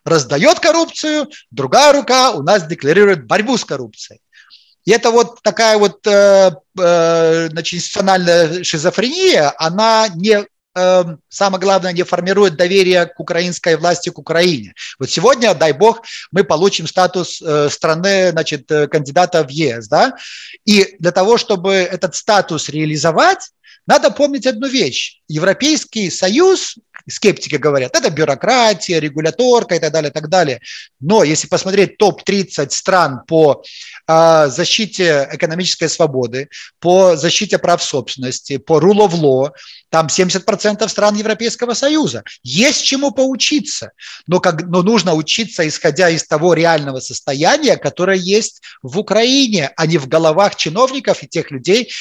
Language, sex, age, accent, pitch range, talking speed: Ukrainian, male, 30-49, native, 160-215 Hz, 135 wpm